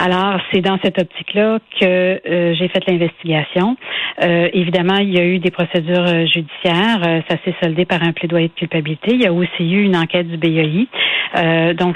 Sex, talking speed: female, 190 wpm